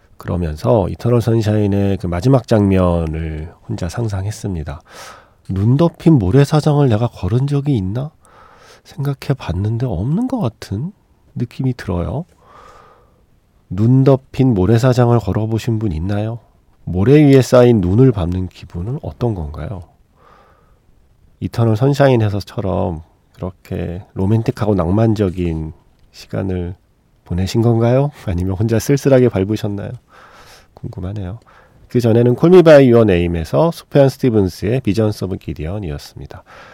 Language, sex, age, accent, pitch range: Korean, male, 40-59, native, 95-125 Hz